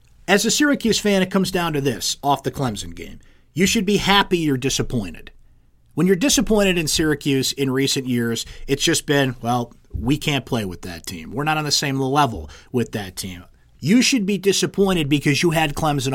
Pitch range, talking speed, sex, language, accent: 120-160 Hz, 200 wpm, male, English, American